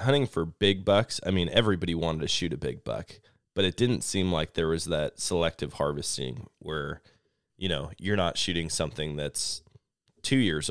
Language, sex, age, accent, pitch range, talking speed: English, male, 20-39, American, 85-105 Hz, 185 wpm